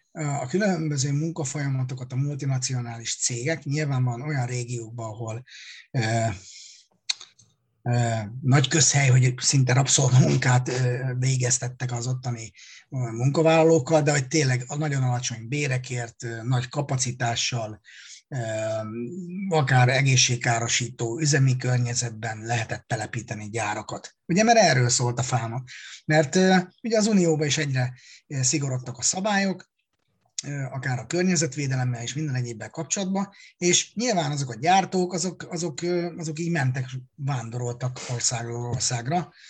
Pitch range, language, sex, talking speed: 125-165 Hz, Hungarian, male, 105 wpm